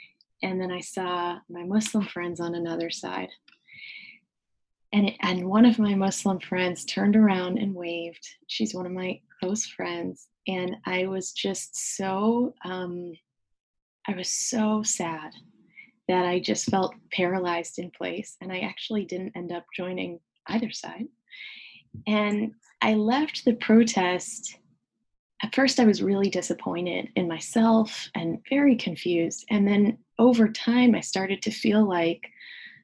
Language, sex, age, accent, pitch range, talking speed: English, female, 20-39, American, 175-220 Hz, 145 wpm